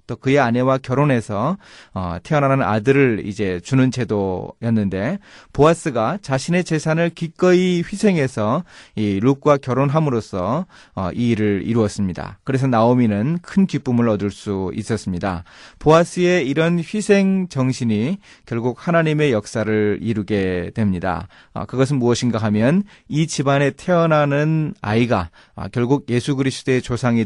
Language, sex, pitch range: Korean, male, 110-160 Hz